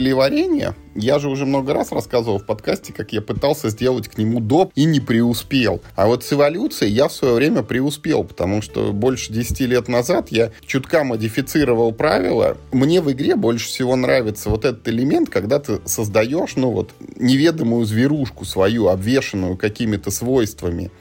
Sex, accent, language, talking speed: male, native, Russian, 165 wpm